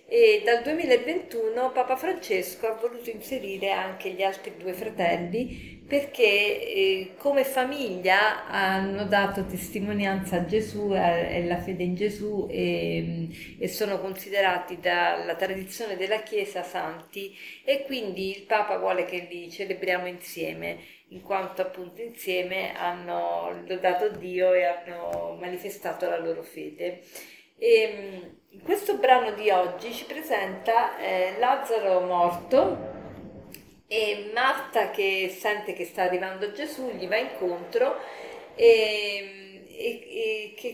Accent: native